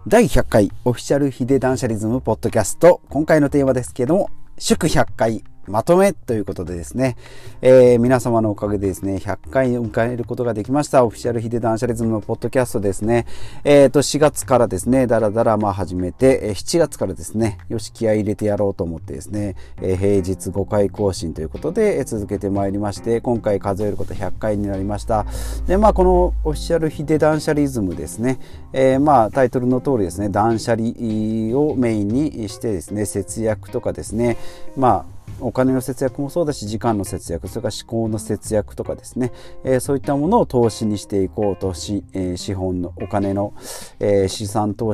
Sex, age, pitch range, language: male, 40-59, 100-130 Hz, Japanese